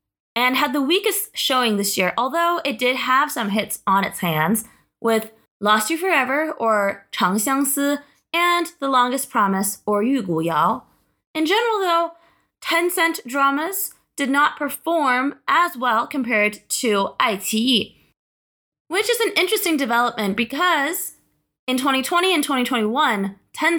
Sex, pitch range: female, 210-310 Hz